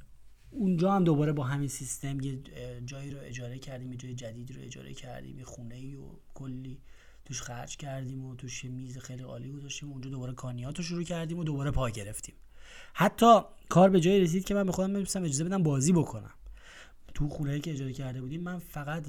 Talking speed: 200 wpm